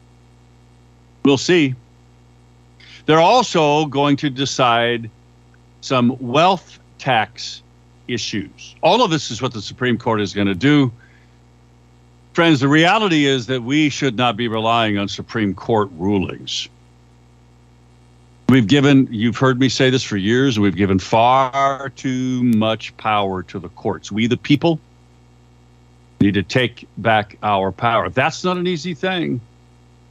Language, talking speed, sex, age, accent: English, 140 wpm, male, 50-69, American